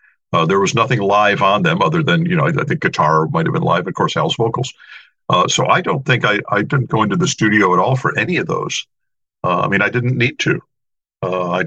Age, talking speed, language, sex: 50-69, 250 wpm, English, male